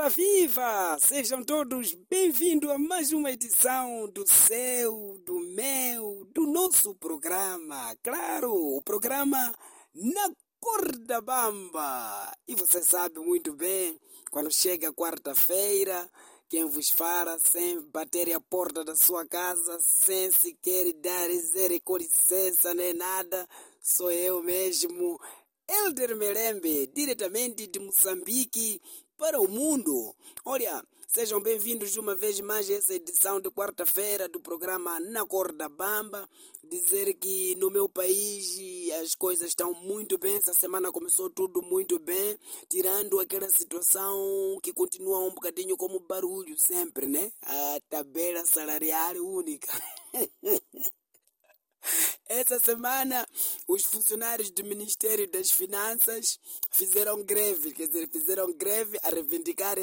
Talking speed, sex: 125 wpm, male